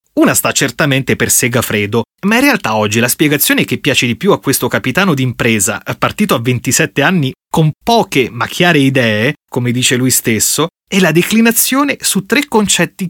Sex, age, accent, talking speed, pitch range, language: male, 30-49, native, 175 wpm, 120-175 Hz, Italian